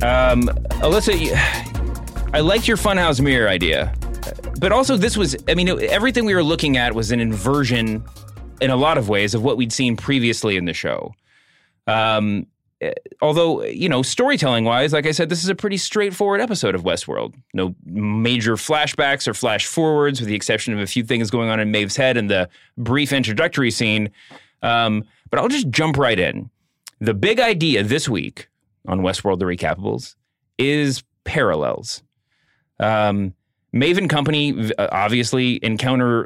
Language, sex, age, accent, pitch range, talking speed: English, male, 30-49, American, 105-140 Hz, 160 wpm